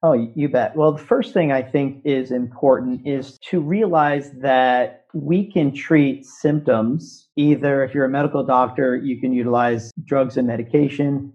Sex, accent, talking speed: male, American, 165 wpm